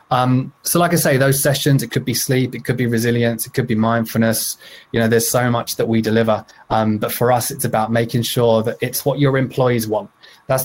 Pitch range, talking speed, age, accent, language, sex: 115-130 Hz, 235 wpm, 20-39, British, English, male